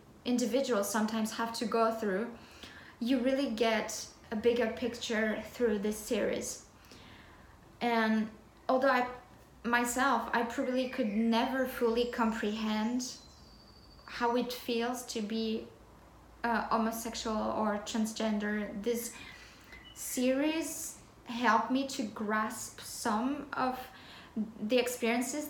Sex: female